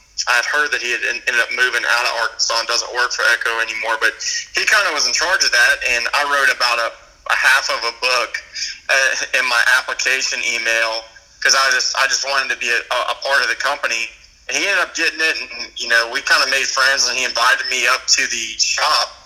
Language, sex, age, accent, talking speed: English, male, 30-49, American, 245 wpm